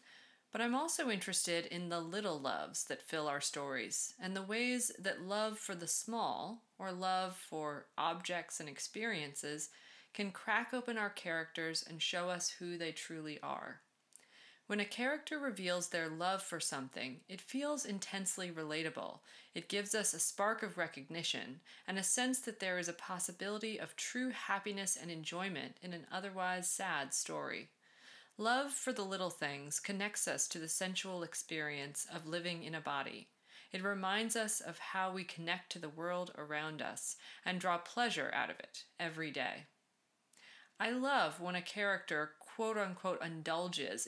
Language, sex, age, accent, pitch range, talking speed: English, female, 30-49, American, 165-205 Hz, 160 wpm